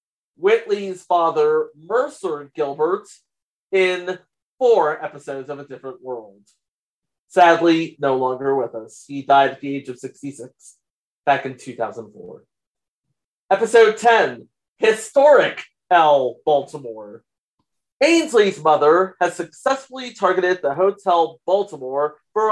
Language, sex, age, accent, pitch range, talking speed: English, male, 30-49, American, 145-225 Hz, 105 wpm